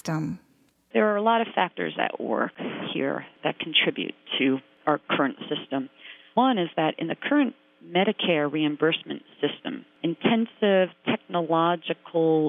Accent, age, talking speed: American, 40-59, 125 wpm